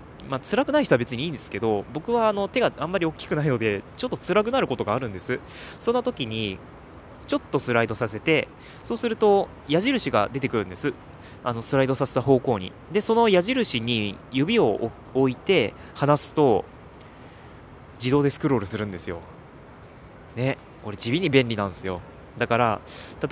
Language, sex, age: Japanese, male, 20-39